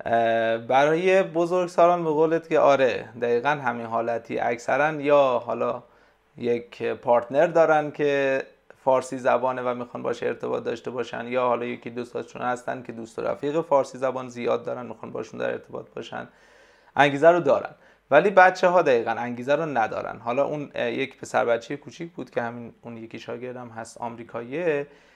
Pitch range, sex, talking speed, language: 120-160 Hz, male, 160 wpm, Persian